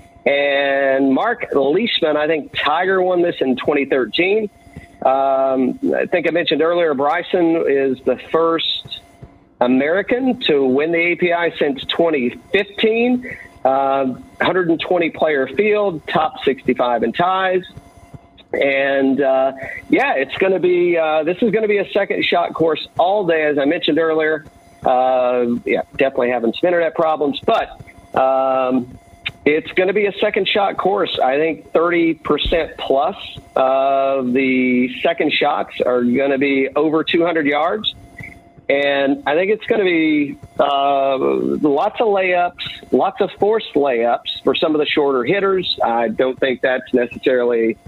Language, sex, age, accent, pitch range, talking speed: English, male, 50-69, American, 130-175 Hz, 145 wpm